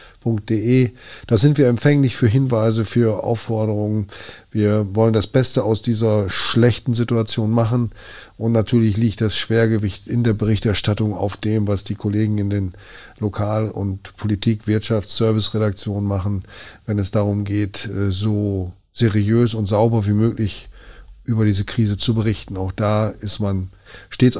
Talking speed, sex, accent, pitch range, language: 140 wpm, male, German, 105-125 Hz, German